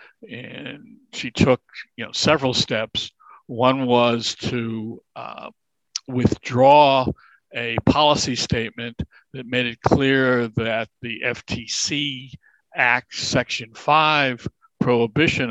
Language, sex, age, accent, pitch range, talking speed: English, male, 60-79, American, 115-135 Hz, 100 wpm